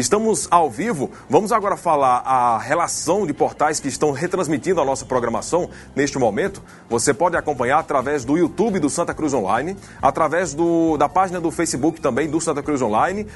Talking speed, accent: 170 wpm, Brazilian